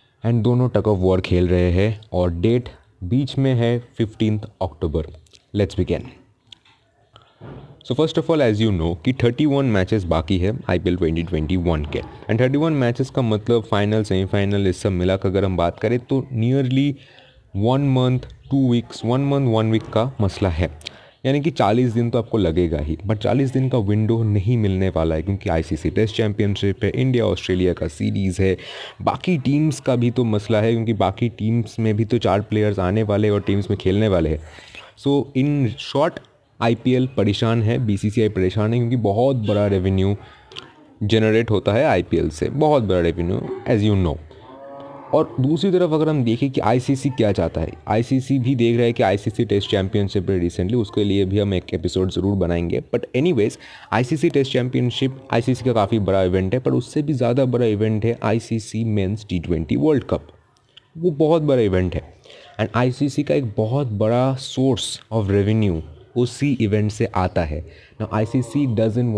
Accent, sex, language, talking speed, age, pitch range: native, male, Hindi, 185 wpm, 30-49, 95-125 Hz